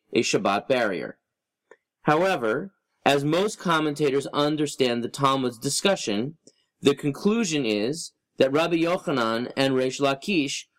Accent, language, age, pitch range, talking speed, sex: American, English, 30-49, 130-175 Hz, 110 wpm, male